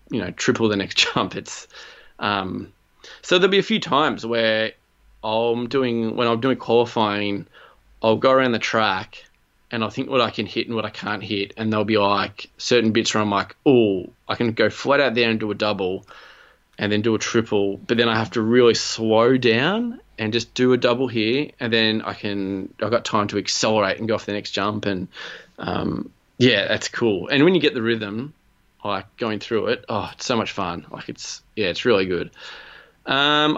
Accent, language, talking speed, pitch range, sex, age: Australian, English, 215 wpm, 105-120 Hz, male, 20-39